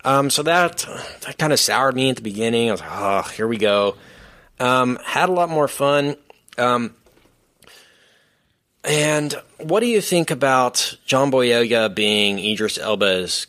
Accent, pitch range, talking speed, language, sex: American, 100-130 Hz, 160 wpm, English, male